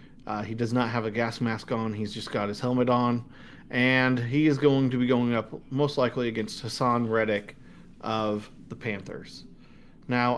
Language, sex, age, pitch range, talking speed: English, male, 30-49, 110-135 Hz, 185 wpm